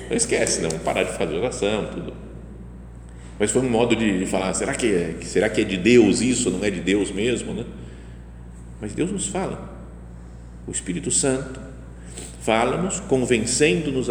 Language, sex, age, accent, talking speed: Portuguese, male, 50-69, Brazilian, 165 wpm